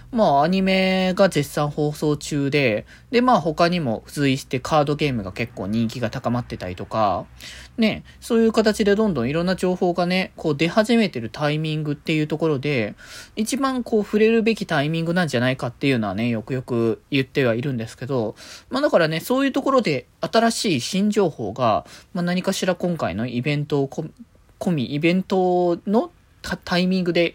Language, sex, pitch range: Japanese, male, 130-200 Hz